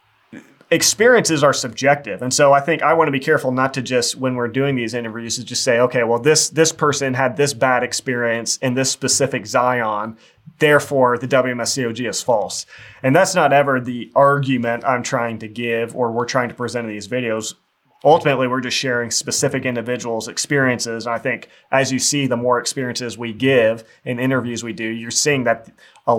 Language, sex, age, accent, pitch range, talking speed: English, male, 30-49, American, 120-140 Hz, 195 wpm